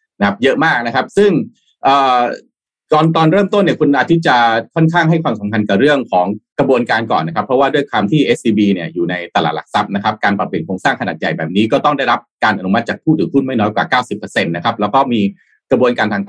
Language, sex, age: Thai, male, 30-49